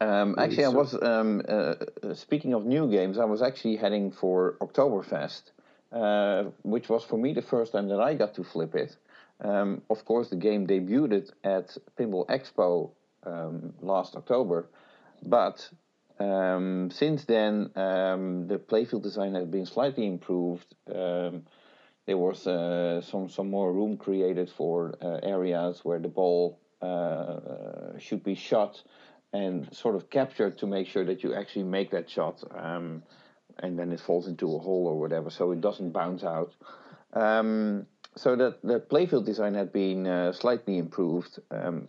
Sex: male